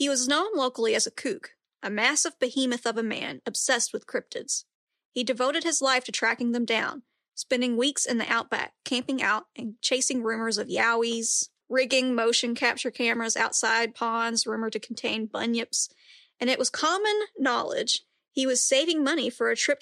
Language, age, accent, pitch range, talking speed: English, 40-59, American, 230-280 Hz, 175 wpm